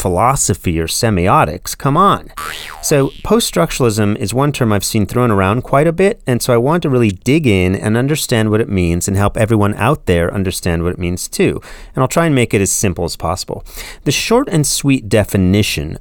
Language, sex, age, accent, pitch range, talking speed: English, male, 30-49, American, 95-135 Hz, 210 wpm